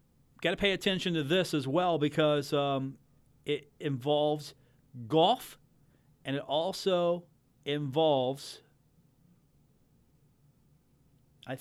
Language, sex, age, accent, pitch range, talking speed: English, male, 40-59, American, 120-150 Hz, 95 wpm